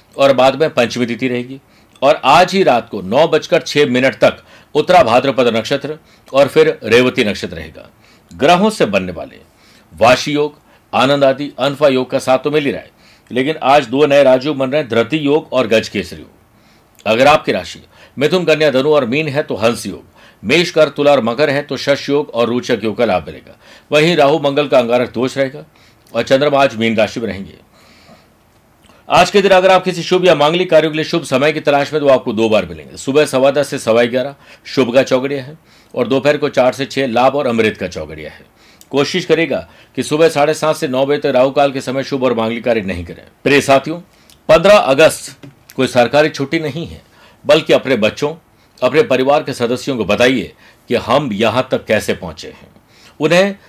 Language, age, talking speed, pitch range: Hindi, 50-69, 200 wpm, 125-155 Hz